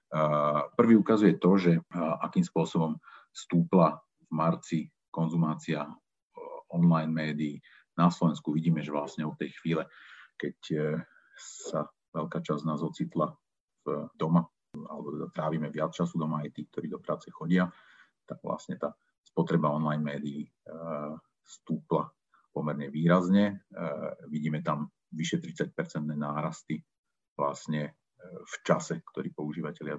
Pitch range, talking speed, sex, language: 75-85 Hz, 115 wpm, male, Slovak